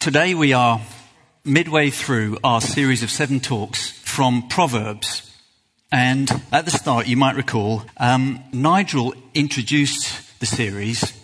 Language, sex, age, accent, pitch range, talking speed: English, male, 40-59, British, 115-150 Hz, 130 wpm